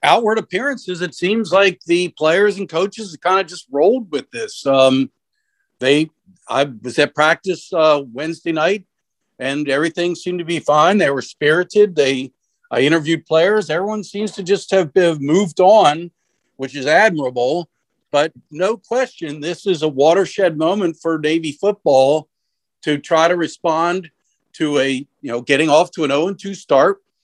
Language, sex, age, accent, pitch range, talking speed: English, male, 50-69, American, 145-205 Hz, 165 wpm